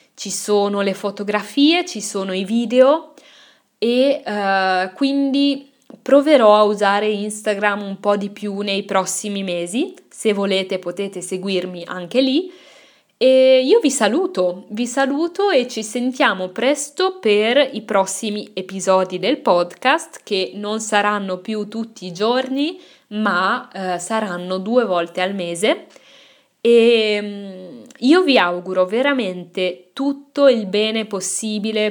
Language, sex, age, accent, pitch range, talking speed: Italian, female, 20-39, native, 190-265 Hz, 125 wpm